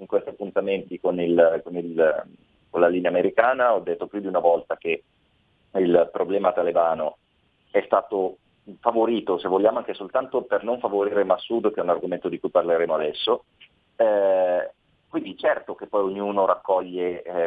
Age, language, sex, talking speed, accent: 30-49, Italian, male, 165 wpm, native